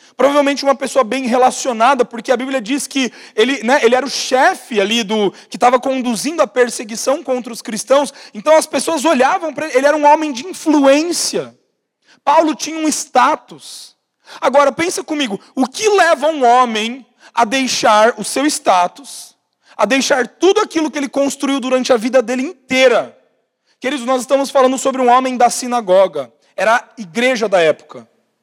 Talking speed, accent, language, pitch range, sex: 170 wpm, Brazilian, Portuguese, 245-310 Hz, male